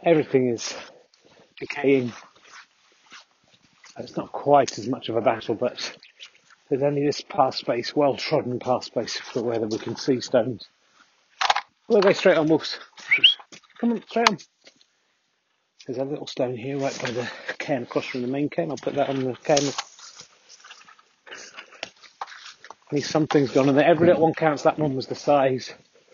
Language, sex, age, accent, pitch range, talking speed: English, male, 30-49, British, 130-160 Hz, 165 wpm